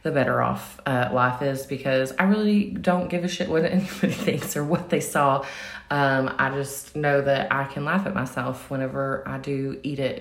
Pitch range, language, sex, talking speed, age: 130-155 Hz, English, female, 205 wpm, 20-39